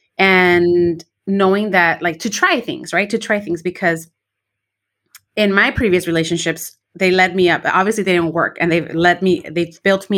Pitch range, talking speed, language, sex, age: 170-195 Hz, 195 wpm, English, female, 30-49